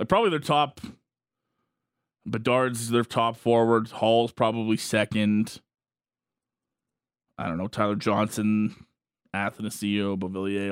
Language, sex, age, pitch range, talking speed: English, male, 20-39, 110-140 Hz, 95 wpm